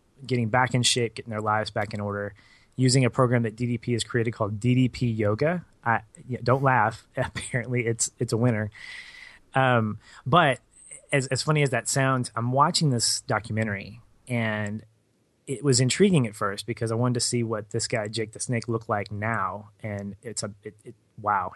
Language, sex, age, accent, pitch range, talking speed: English, male, 20-39, American, 105-130 Hz, 185 wpm